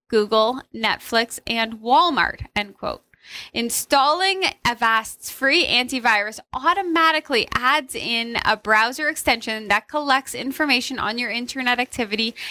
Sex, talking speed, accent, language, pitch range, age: female, 110 wpm, American, English, 225-295 Hz, 20-39